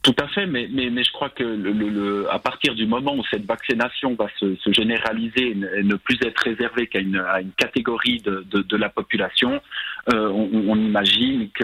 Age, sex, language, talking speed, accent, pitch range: 40-59, male, French, 220 wpm, French, 100-120 Hz